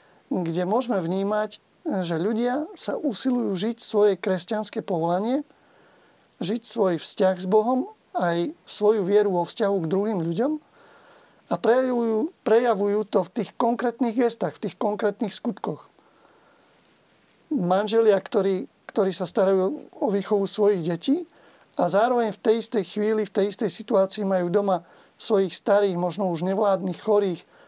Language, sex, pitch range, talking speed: Slovak, male, 185-220 Hz, 135 wpm